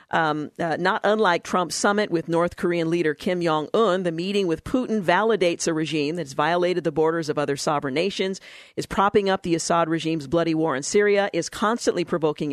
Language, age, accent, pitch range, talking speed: English, 50-69, American, 165-200 Hz, 190 wpm